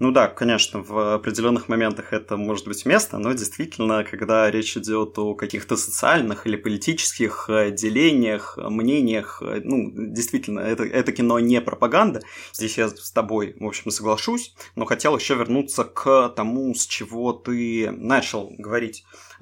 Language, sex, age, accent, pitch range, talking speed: Russian, male, 20-39, native, 110-125 Hz, 145 wpm